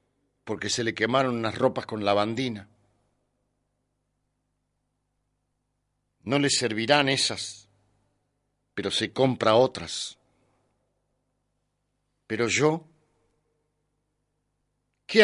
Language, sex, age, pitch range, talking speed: Spanish, male, 60-79, 115-135 Hz, 75 wpm